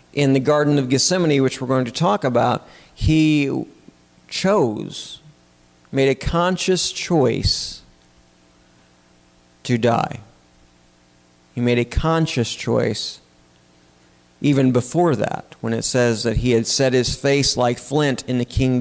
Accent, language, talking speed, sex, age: American, English, 130 wpm, male, 50-69